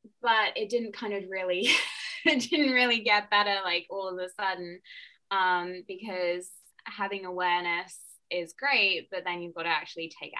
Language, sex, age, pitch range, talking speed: English, female, 20-39, 155-185 Hz, 165 wpm